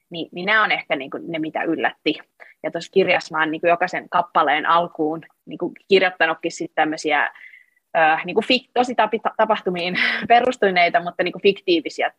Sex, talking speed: female, 155 wpm